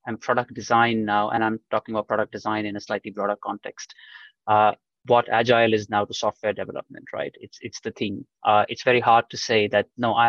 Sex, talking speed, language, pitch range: male, 215 wpm, English, 110-140 Hz